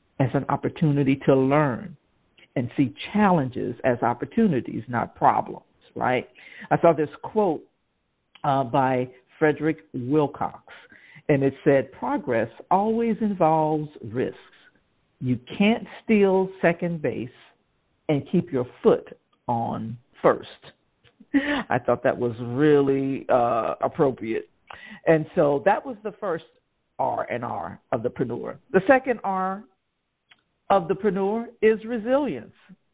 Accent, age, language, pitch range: American, 60-79, English, 150-220 Hz